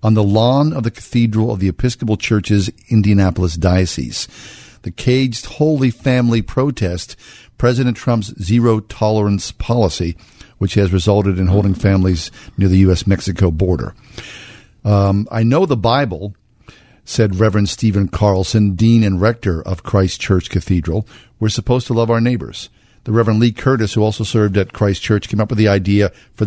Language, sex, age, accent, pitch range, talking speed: English, male, 50-69, American, 100-120 Hz, 160 wpm